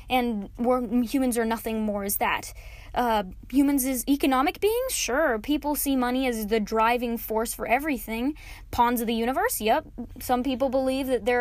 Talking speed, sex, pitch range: 175 wpm, female, 240-295 Hz